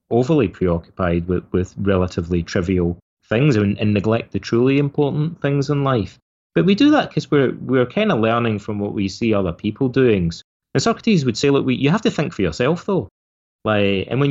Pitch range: 95-130 Hz